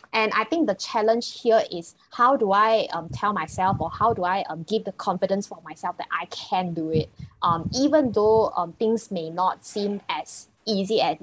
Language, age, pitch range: English, 10-29, 180-225 Hz